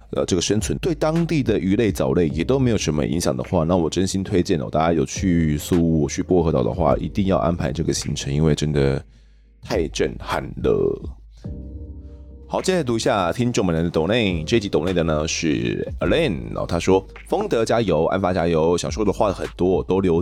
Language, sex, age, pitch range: Chinese, male, 20-39, 80-95 Hz